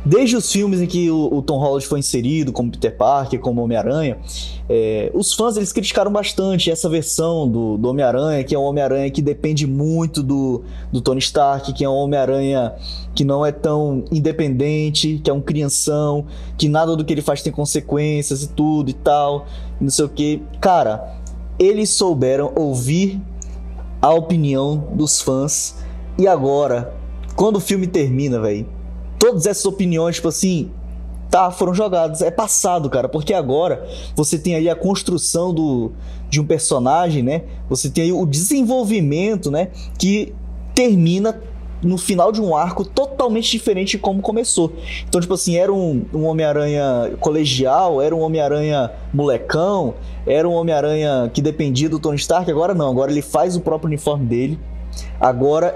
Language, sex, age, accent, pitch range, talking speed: Portuguese, male, 20-39, Brazilian, 135-175 Hz, 160 wpm